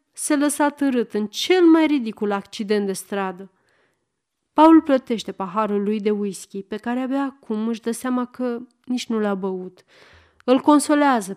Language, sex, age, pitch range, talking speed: Romanian, female, 30-49, 205-275 Hz, 165 wpm